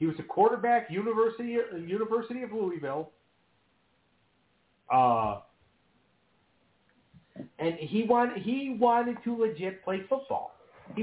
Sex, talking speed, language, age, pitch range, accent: male, 105 wpm, English, 50-69, 140-195 Hz, American